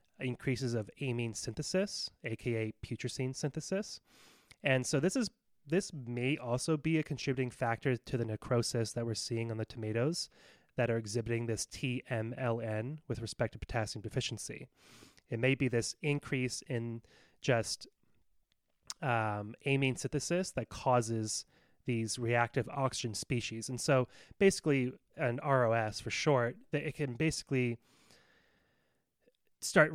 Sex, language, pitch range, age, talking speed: male, English, 110-135 Hz, 20-39, 130 wpm